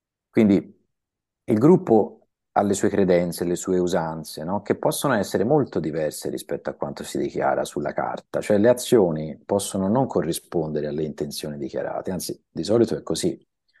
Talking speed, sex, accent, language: 155 wpm, male, native, Italian